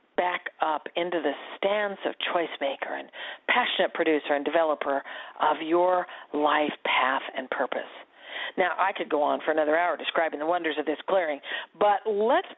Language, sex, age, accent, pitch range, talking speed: English, female, 50-69, American, 155-200 Hz, 165 wpm